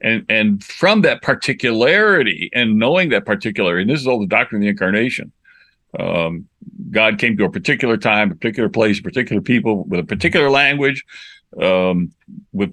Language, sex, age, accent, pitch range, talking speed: English, male, 60-79, American, 100-125 Hz, 175 wpm